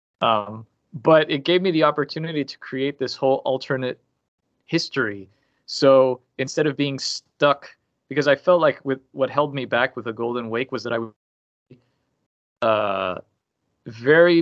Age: 20-39